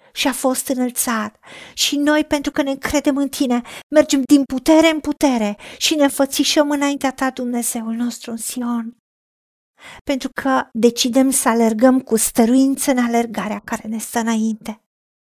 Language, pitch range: Romanian, 225-270 Hz